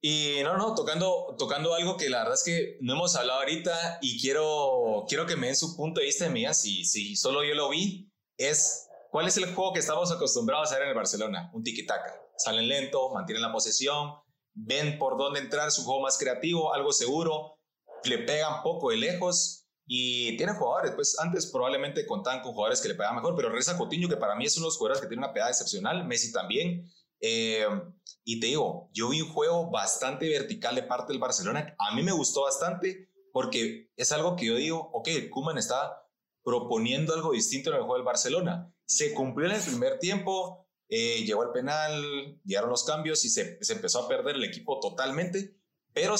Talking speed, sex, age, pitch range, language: 205 wpm, male, 30-49, 140-195 Hz, Spanish